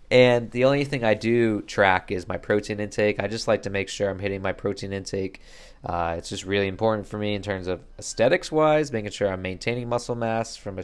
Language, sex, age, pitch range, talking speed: English, male, 20-39, 95-115 Hz, 225 wpm